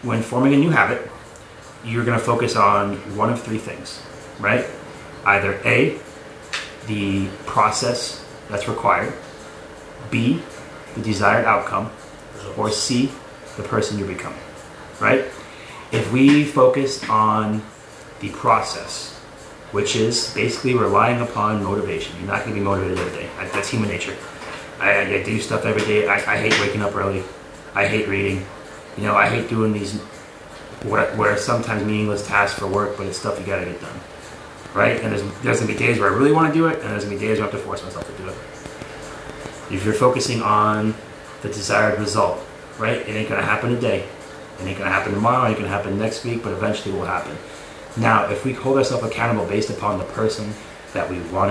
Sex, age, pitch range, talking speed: male, 30-49, 100-120 Hz, 190 wpm